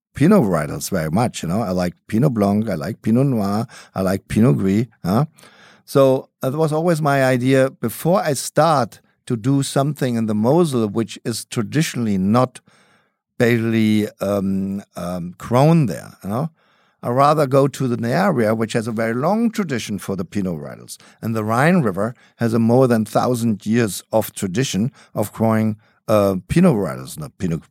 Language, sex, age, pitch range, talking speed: English, male, 50-69, 95-135 Hz, 175 wpm